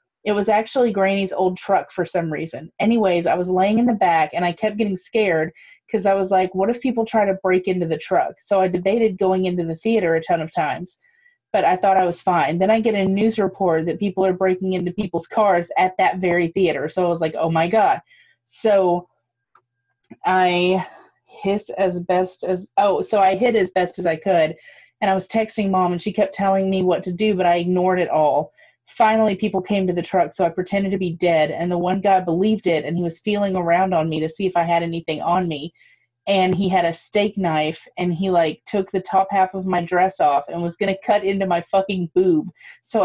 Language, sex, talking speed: English, female, 235 wpm